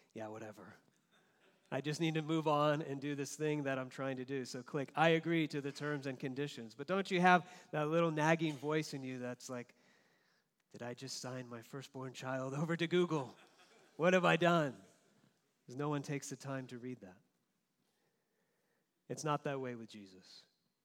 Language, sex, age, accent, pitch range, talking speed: English, male, 40-59, American, 120-150 Hz, 195 wpm